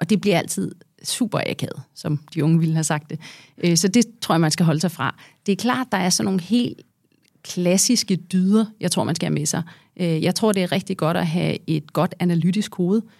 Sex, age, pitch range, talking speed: female, 30-49, 165-200 Hz, 230 wpm